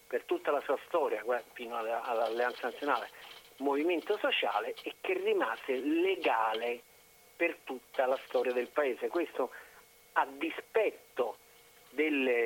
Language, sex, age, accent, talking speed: Italian, male, 40-59, native, 115 wpm